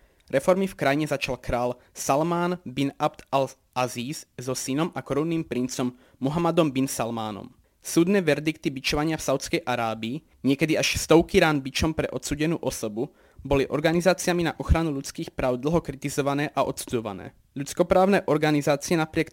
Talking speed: 135 wpm